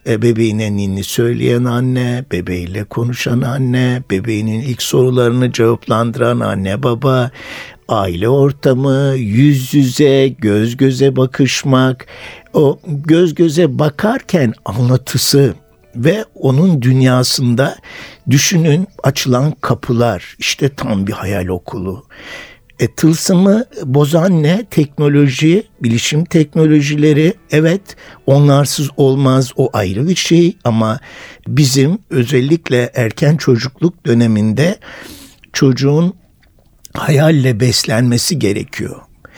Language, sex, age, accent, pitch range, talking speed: Turkish, male, 60-79, native, 120-165 Hz, 90 wpm